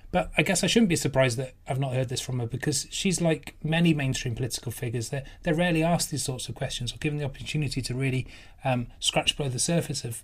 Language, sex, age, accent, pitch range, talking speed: English, male, 30-49, British, 120-150 Hz, 240 wpm